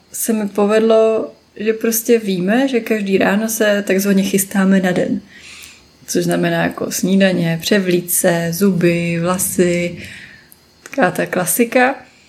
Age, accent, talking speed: 20-39, native, 115 wpm